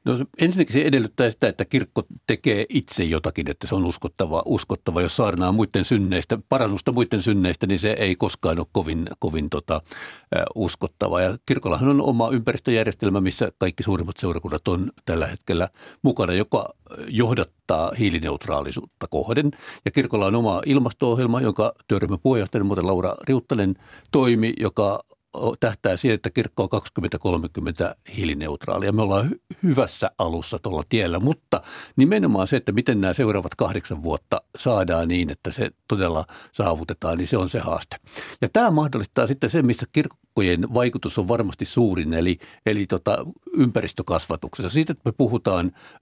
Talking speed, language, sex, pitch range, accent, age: 145 wpm, Finnish, male, 95-120 Hz, native, 60-79